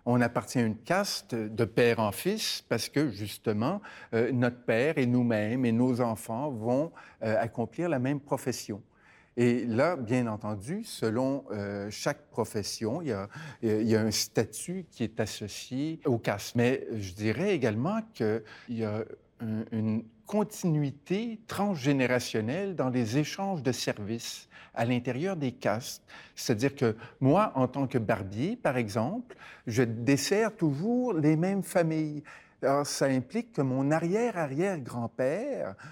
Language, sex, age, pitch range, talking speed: French, male, 50-69, 120-175 Hz, 145 wpm